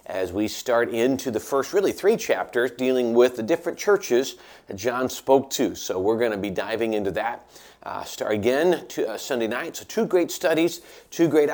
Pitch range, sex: 115-170 Hz, male